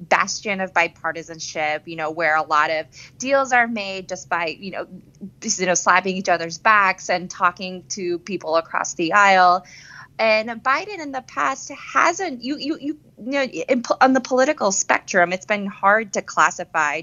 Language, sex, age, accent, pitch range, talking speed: English, female, 20-39, American, 165-195 Hz, 180 wpm